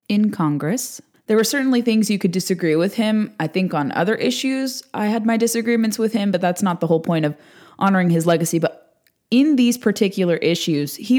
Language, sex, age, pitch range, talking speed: English, female, 20-39, 160-205 Hz, 205 wpm